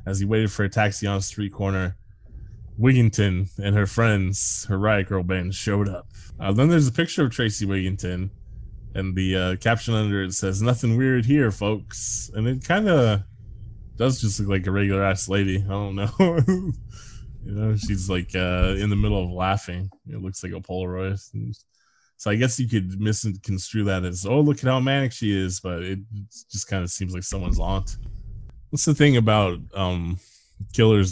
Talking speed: 190 wpm